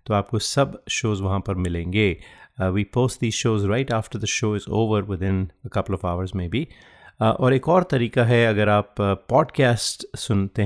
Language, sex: Hindi, male